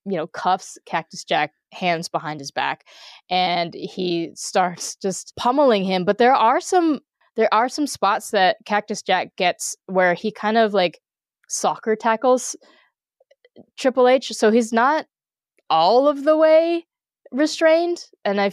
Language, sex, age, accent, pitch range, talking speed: English, female, 20-39, American, 175-235 Hz, 150 wpm